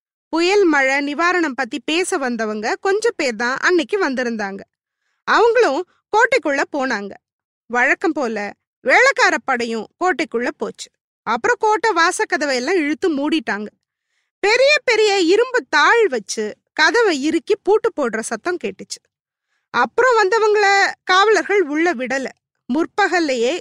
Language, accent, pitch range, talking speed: Tamil, native, 280-420 Hz, 60 wpm